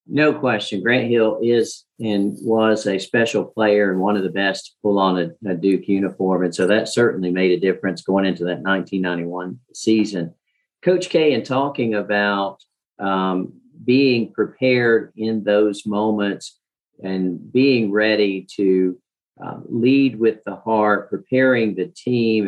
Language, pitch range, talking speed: English, 95-120 Hz, 150 wpm